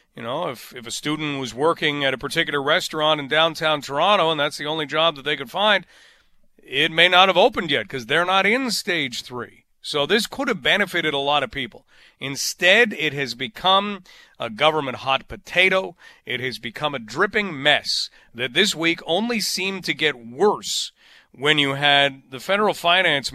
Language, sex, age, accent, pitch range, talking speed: English, male, 40-59, American, 150-195 Hz, 190 wpm